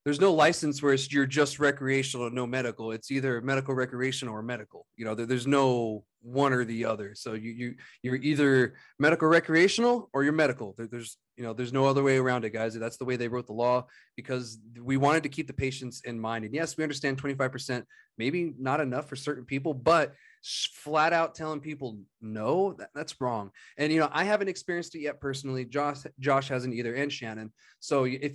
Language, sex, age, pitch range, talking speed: English, male, 30-49, 125-155 Hz, 210 wpm